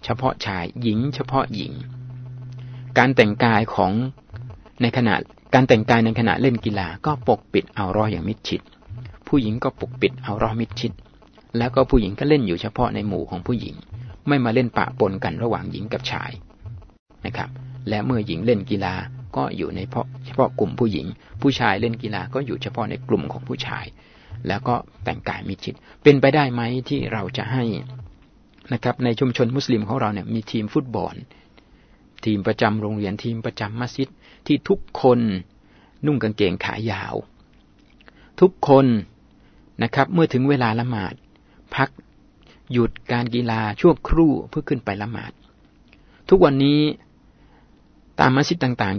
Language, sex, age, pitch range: Thai, male, 60-79, 105-130 Hz